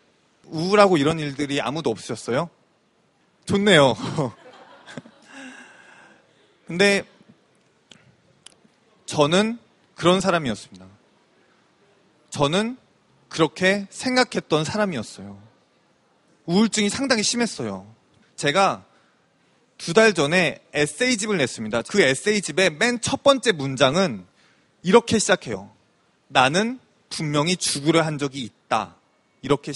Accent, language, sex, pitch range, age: native, Korean, male, 150-225 Hz, 30-49